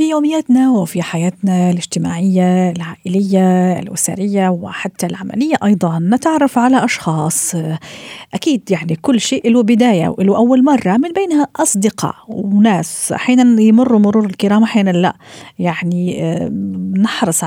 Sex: female